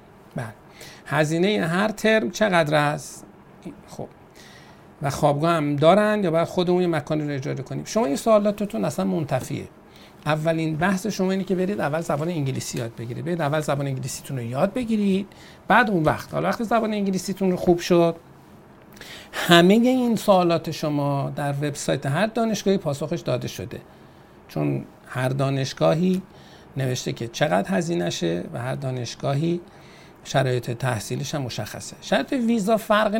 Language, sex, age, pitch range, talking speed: Persian, male, 50-69, 140-190 Hz, 140 wpm